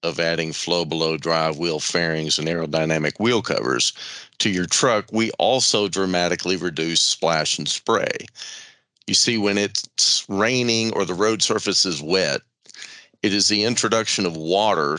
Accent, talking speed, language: American, 150 wpm, English